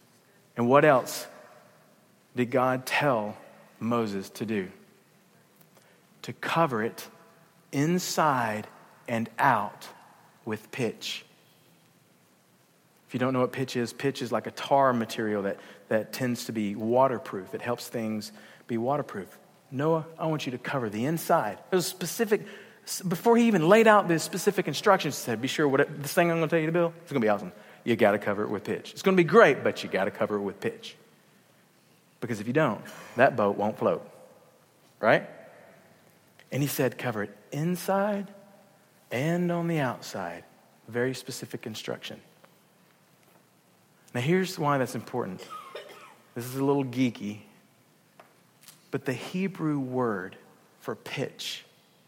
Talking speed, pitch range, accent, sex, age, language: 155 wpm, 115-170 Hz, American, male, 40-59, English